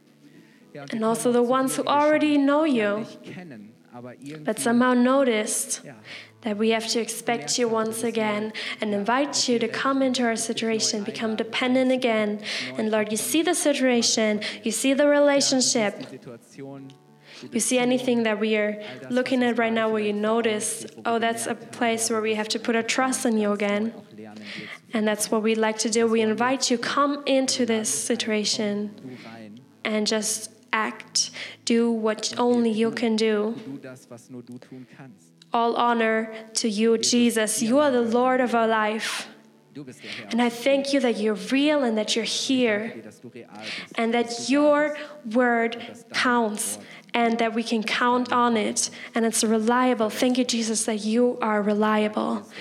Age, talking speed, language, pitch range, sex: 10-29, 155 wpm, German, 215-245 Hz, female